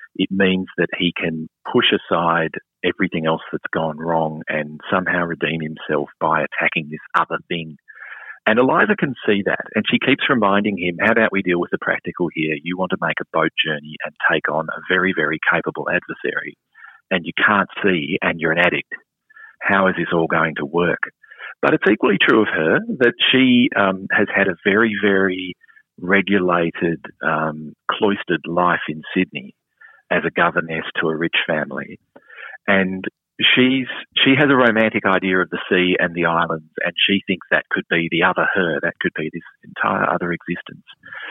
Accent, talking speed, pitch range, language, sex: Australian, 180 wpm, 80-100 Hz, English, male